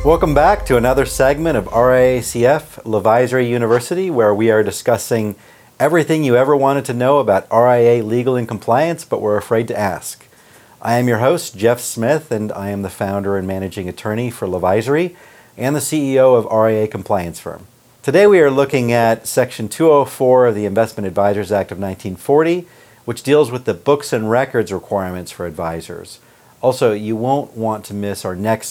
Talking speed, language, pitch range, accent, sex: 175 wpm, English, 100-130 Hz, American, male